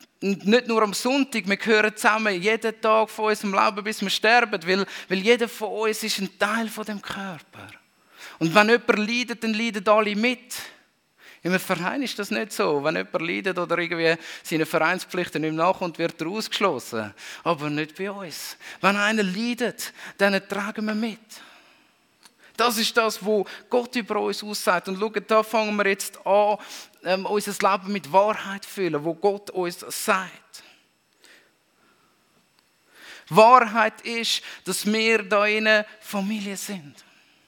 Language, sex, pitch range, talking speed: German, male, 185-220 Hz, 155 wpm